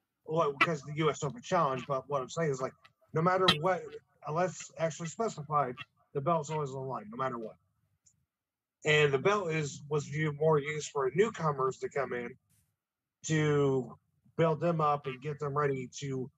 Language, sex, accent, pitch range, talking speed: English, male, American, 140-165 Hz, 180 wpm